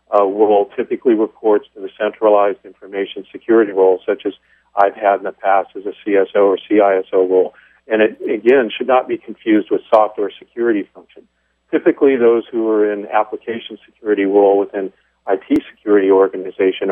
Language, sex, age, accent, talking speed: English, male, 50-69, American, 165 wpm